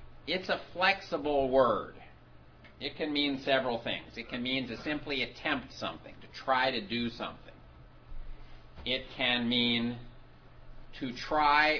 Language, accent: English, American